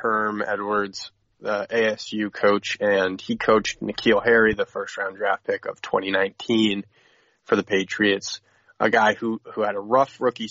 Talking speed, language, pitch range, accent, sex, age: 155 wpm, English, 100-115 Hz, American, male, 20-39